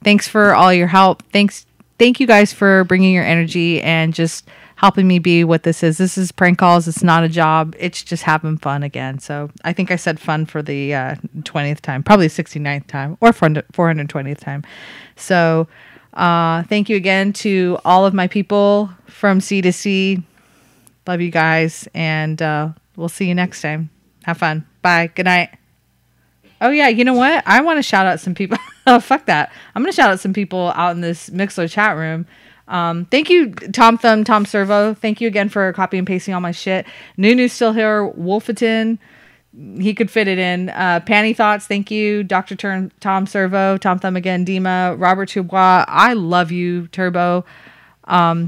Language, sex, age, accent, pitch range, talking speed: English, female, 30-49, American, 165-195 Hz, 190 wpm